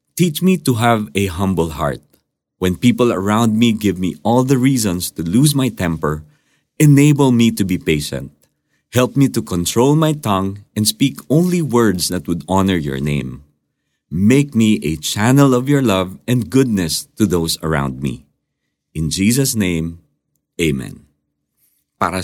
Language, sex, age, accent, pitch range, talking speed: Filipino, male, 50-69, native, 85-125 Hz, 155 wpm